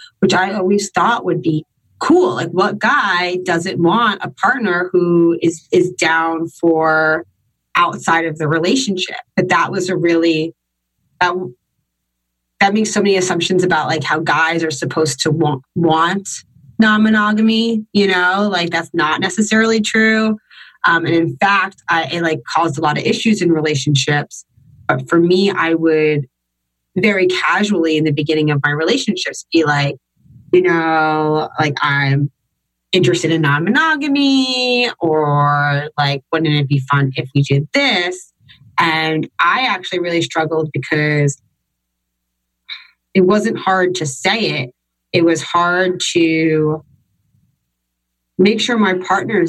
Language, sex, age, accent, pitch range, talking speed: English, female, 30-49, American, 145-185 Hz, 140 wpm